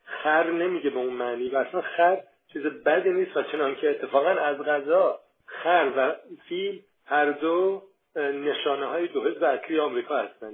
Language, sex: Persian, male